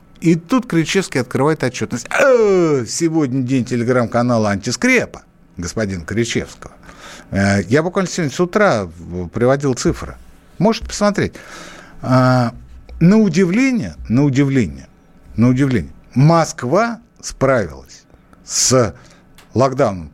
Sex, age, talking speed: male, 60-79, 90 wpm